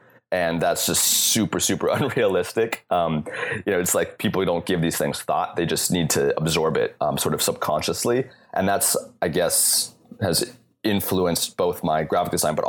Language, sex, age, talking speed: English, male, 30-49, 185 wpm